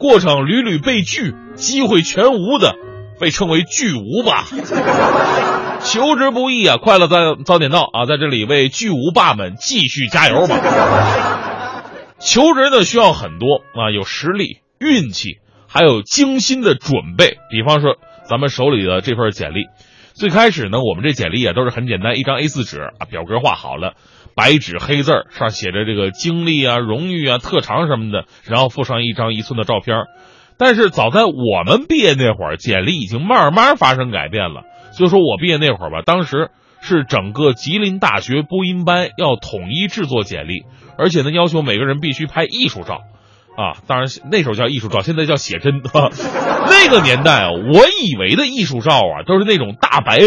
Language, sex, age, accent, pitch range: Chinese, male, 30-49, native, 120-180 Hz